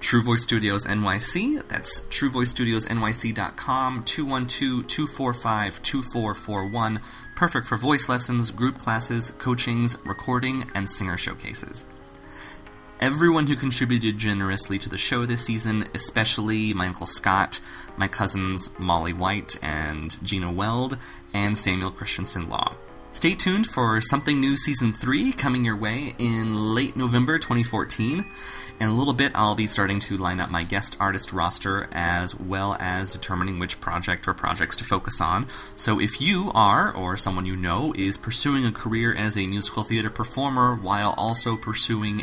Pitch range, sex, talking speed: 95-125 Hz, male, 145 wpm